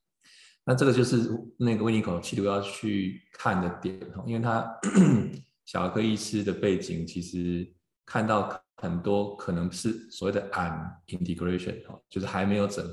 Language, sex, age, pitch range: Chinese, male, 20-39, 90-110 Hz